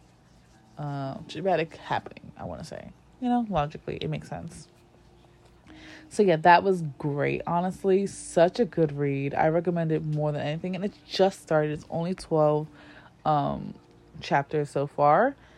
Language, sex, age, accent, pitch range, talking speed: English, female, 20-39, American, 150-190 Hz, 155 wpm